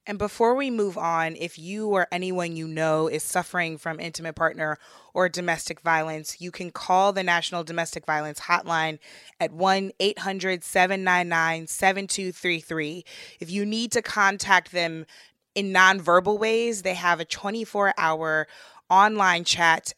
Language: English